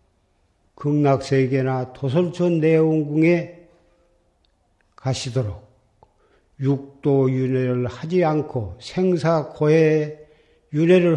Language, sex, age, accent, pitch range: Korean, male, 50-69, native, 120-150 Hz